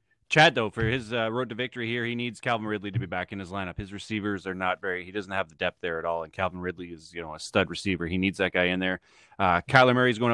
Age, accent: 30-49, American